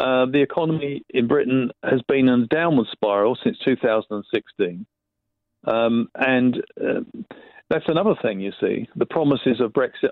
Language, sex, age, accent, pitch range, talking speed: English, male, 50-69, British, 110-155 Hz, 150 wpm